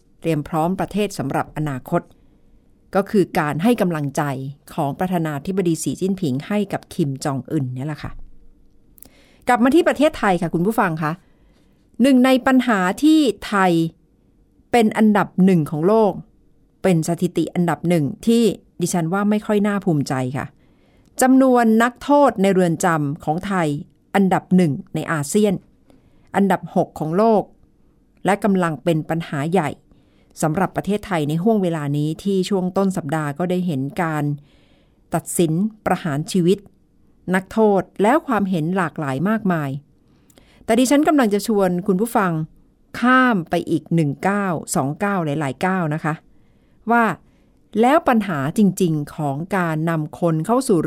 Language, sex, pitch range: Thai, female, 155-205 Hz